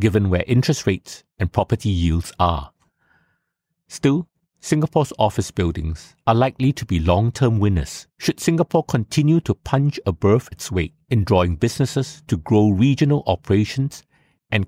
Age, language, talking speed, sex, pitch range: 50-69, English, 145 wpm, male, 95-135 Hz